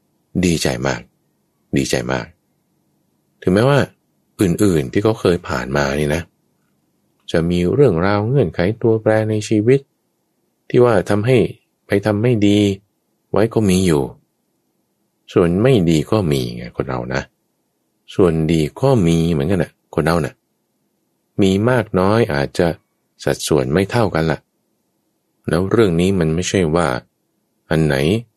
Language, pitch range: English, 75-105 Hz